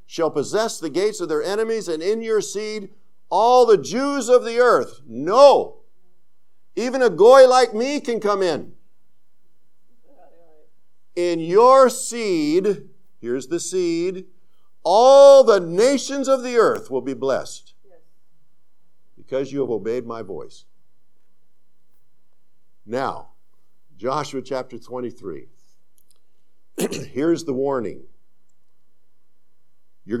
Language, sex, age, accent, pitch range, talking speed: English, male, 50-69, American, 130-210 Hz, 110 wpm